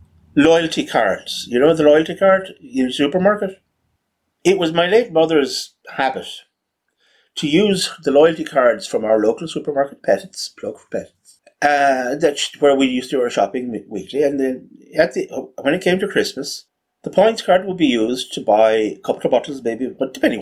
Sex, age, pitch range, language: male, 30-49, 120-185 Hz, English